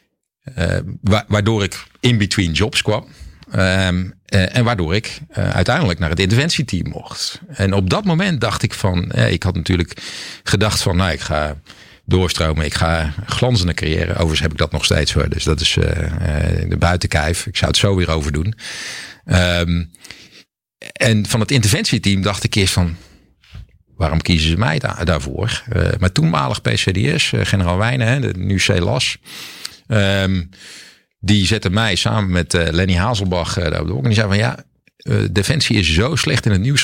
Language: Dutch